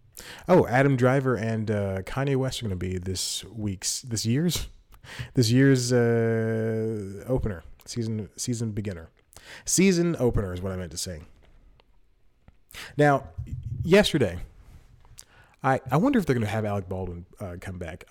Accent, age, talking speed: American, 30-49, 150 wpm